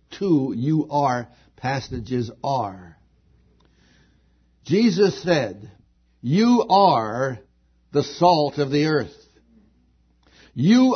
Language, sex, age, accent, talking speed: English, male, 70-89, American, 80 wpm